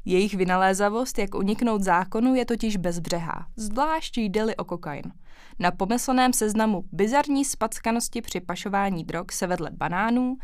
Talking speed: 130 wpm